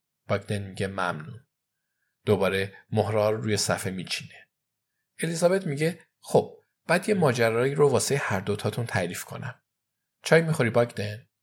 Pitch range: 105-130 Hz